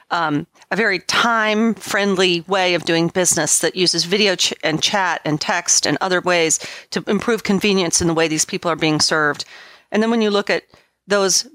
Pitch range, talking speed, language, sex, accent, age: 170-210 Hz, 180 wpm, English, female, American, 40-59